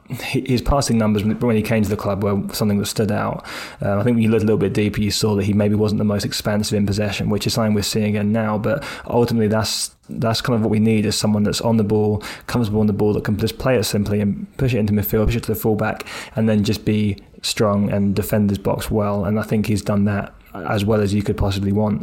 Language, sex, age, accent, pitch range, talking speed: English, male, 20-39, British, 105-110 Hz, 270 wpm